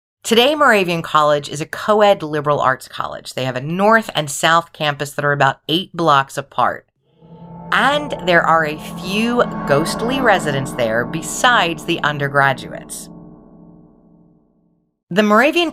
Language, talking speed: English, 135 wpm